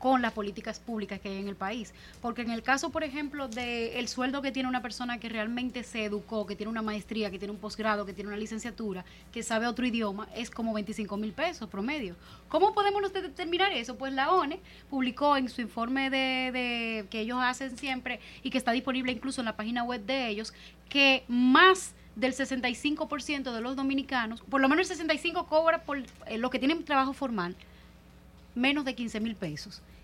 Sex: female